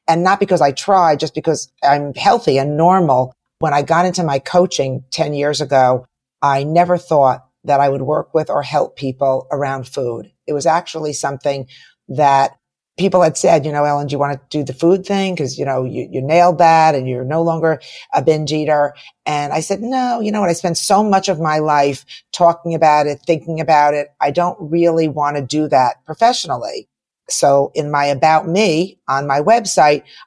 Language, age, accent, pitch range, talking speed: English, 50-69, American, 140-170 Hz, 200 wpm